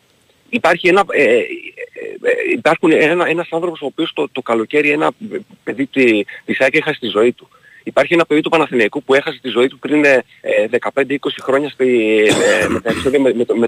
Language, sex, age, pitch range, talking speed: Greek, male, 40-59, 130-195 Hz, 150 wpm